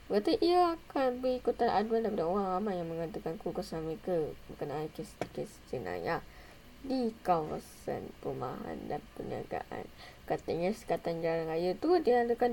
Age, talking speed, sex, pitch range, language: 20-39, 125 wpm, female, 165-225 Hz, Malay